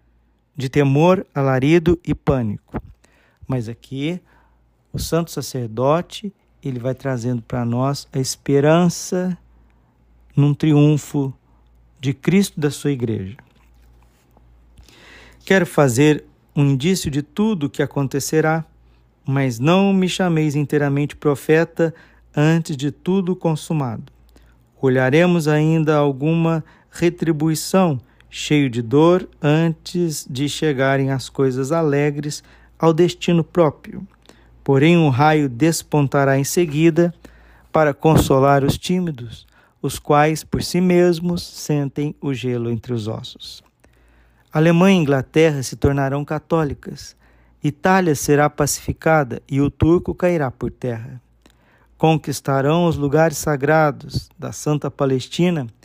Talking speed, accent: 110 wpm, Brazilian